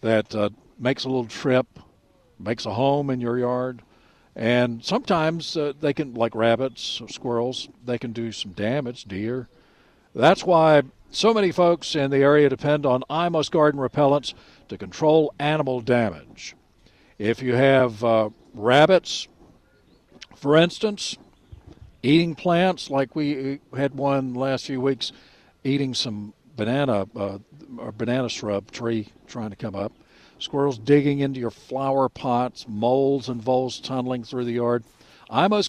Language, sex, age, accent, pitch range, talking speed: English, male, 60-79, American, 120-150 Hz, 145 wpm